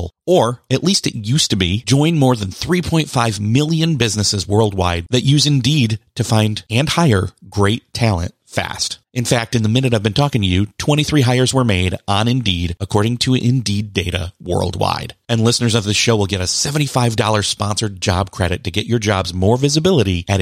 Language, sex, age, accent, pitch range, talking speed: English, male, 30-49, American, 100-140 Hz, 190 wpm